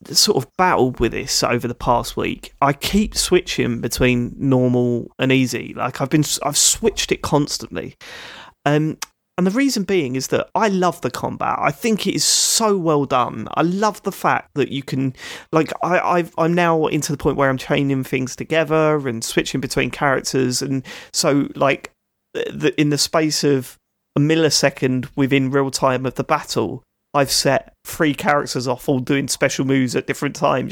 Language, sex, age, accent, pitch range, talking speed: English, male, 30-49, British, 130-170 Hz, 185 wpm